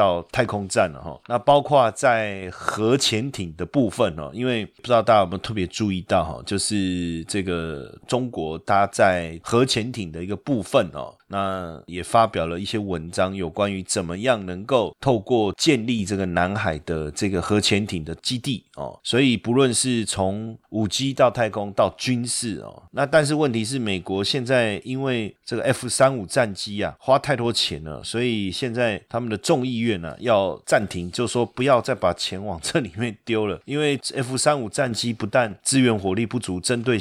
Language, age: Chinese, 30-49